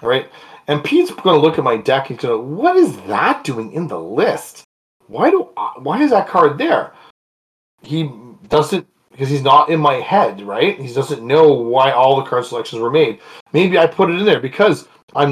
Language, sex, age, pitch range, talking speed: English, male, 30-49, 130-180 Hz, 210 wpm